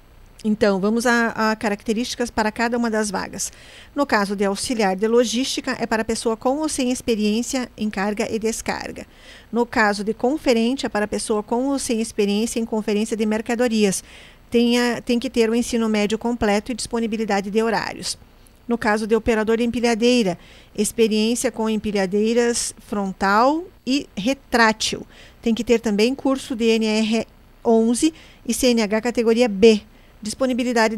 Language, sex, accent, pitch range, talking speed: Portuguese, female, Brazilian, 215-245 Hz, 150 wpm